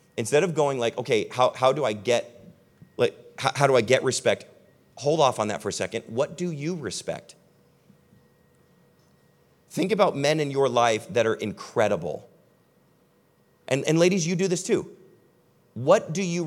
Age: 30-49